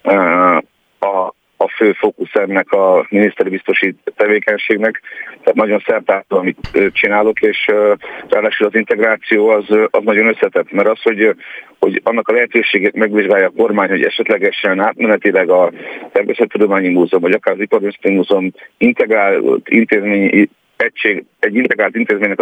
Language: Hungarian